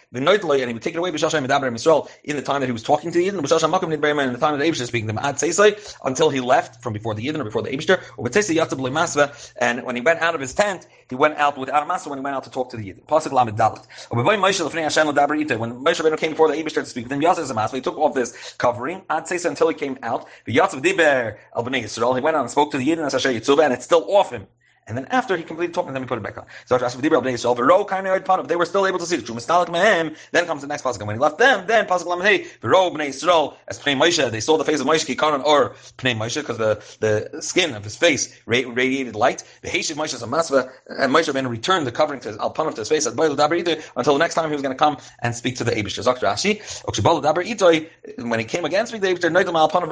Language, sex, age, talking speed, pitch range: English, male, 30-49, 230 wpm, 125-170 Hz